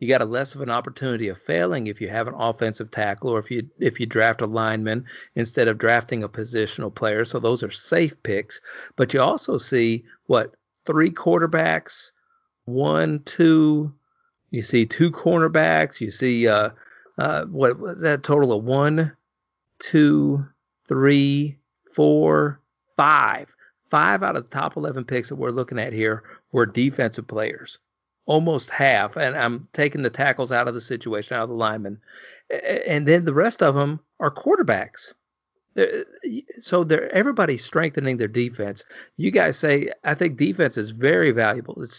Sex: male